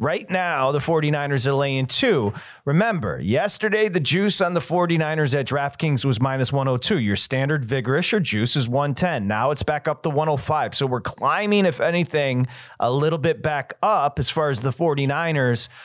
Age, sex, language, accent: 30-49, male, English, American